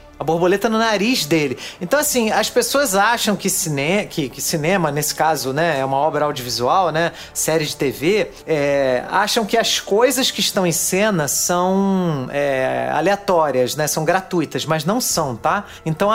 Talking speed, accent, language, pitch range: 160 wpm, Brazilian, Portuguese, 155-205 Hz